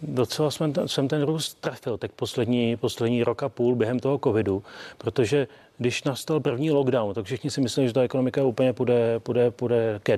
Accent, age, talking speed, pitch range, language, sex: native, 40-59, 185 wpm, 115-130 Hz, Czech, male